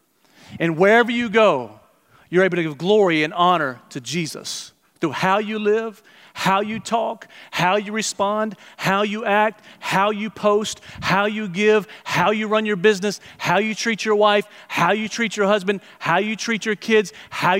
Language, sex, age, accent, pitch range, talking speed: English, male, 40-59, American, 185-230 Hz, 180 wpm